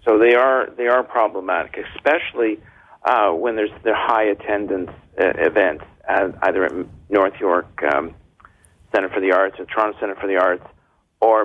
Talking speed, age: 170 wpm, 50-69